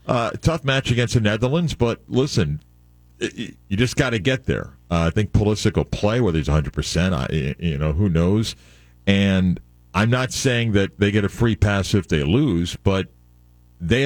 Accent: American